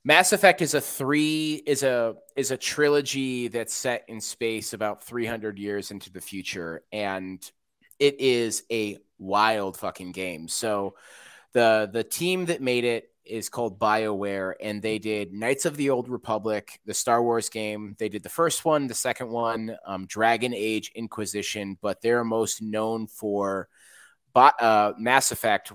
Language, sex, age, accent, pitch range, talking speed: English, male, 30-49, American, 105-120 Hz, 160 wpm